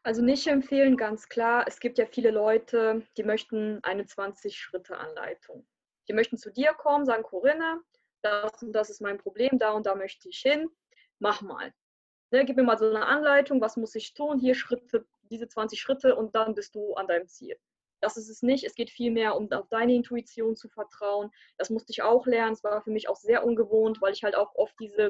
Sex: female